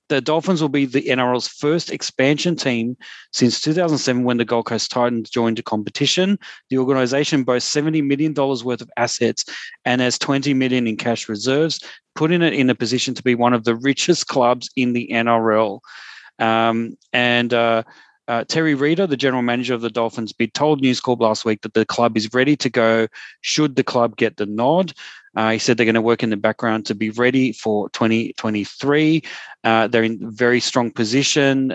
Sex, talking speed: male, 190 wpm